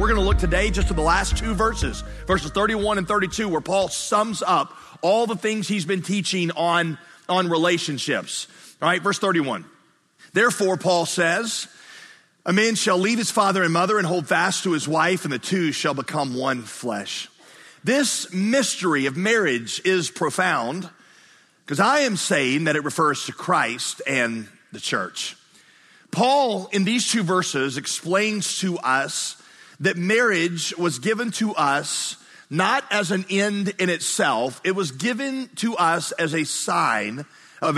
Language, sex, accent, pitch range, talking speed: English, male, American, 155-210 Hz, 160 wpm